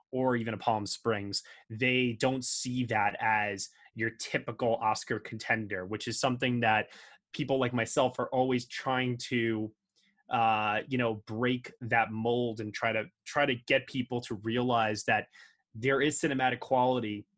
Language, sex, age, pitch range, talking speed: English, male, 20-39, 110-135 Hz, 155 wpm